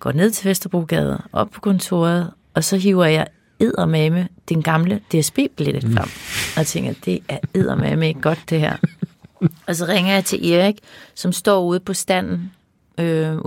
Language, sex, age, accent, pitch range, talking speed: Danish, female, 30-49, native, 160-195 Hz, 165 wpm